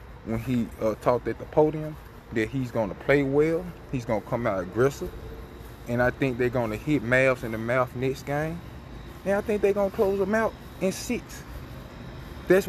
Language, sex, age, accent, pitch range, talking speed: English, male, 20-39, American, 110-150 Hz, 190 wpm